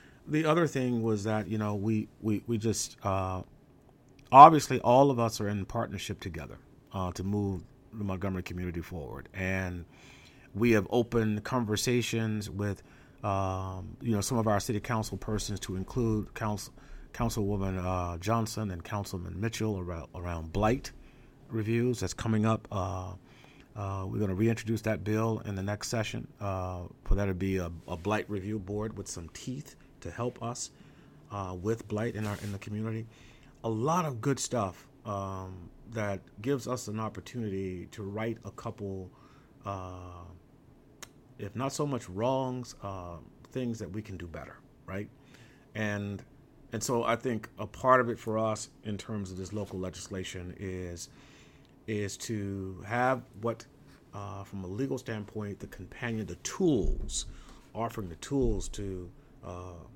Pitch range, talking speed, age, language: 95-120 Hz, 160 wpm, 40-59, English